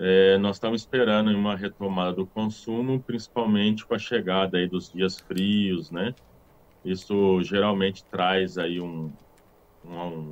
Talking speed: 120 wpm